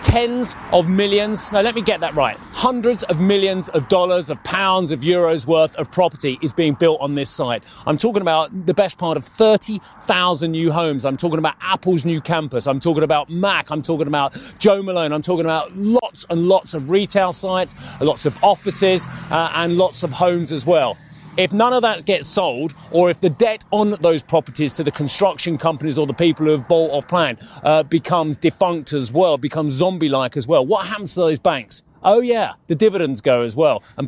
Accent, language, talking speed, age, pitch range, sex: British, English, 210 wpm, 30-49, 150-190 Hz, male